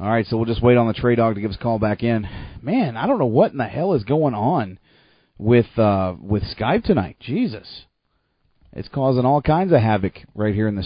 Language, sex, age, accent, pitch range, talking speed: English, male, 40-59, American, 100-125 Hz, 245 wpm